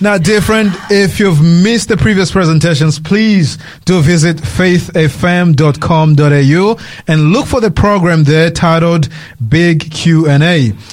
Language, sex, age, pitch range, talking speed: English, male, 30-49, 155-210 Hz, 120 wpm